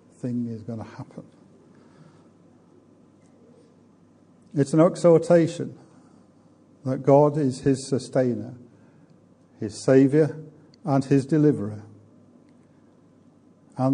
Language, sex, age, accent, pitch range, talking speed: English, male, 50-69, British, 125-150 Hz, 80 wpm